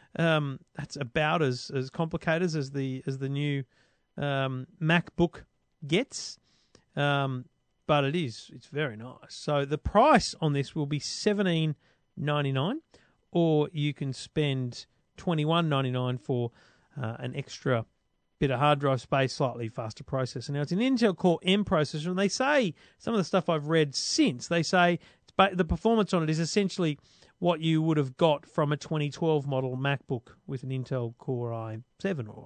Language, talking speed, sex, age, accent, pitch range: English, 165 wpm, male, 40-59, Australian, 135-180 Hz